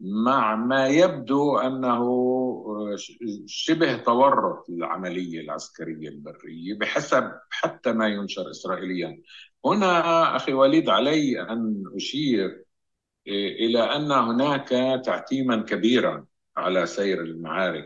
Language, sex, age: Arabic, male, 50-69